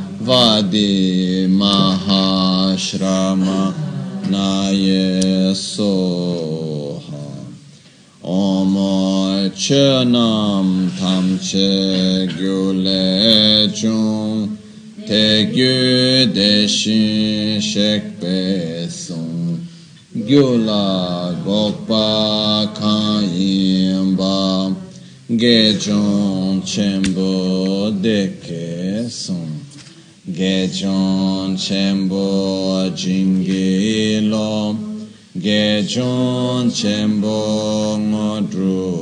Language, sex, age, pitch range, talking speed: Italian, male, 30-49, 95-110 Hz, 30 wpm